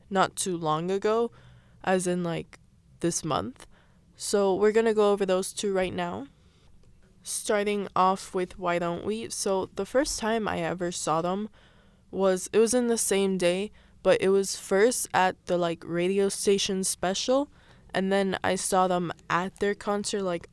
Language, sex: English, female